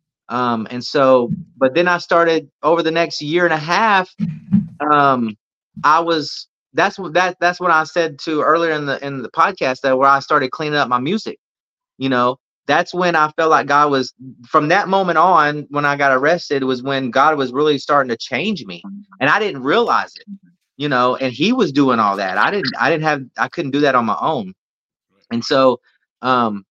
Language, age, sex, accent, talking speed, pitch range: English, 30-49, male, American, 210 wpm, 120-155 Hz